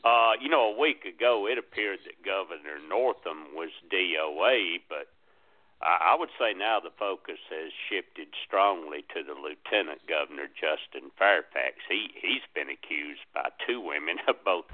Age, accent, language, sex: 60-79, American, English, male